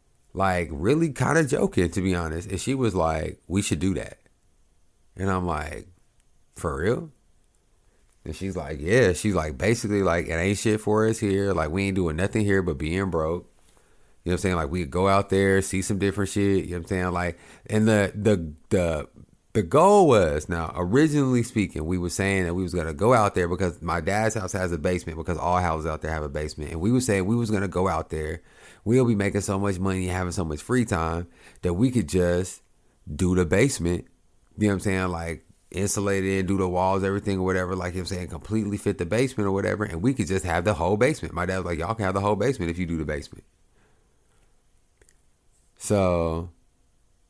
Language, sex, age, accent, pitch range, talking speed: English, male, 30-49, American, 85-105 Hz, 225 wpm